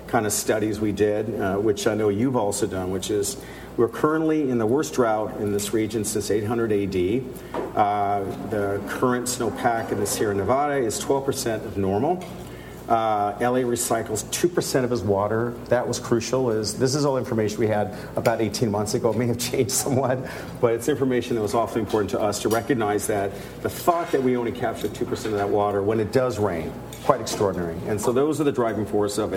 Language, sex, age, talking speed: English, male, 50-69, 205 wpm